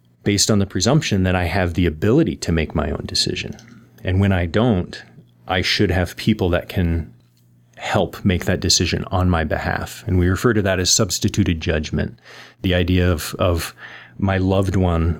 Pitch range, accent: 85-105 Hz, American